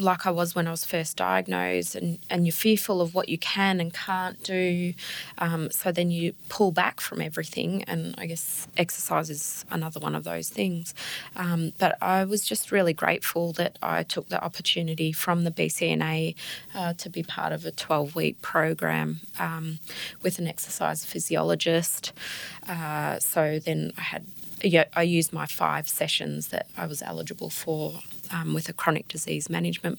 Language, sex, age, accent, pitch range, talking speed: English, female, 20-39, Australian, 155-180 Hz, 170 wpm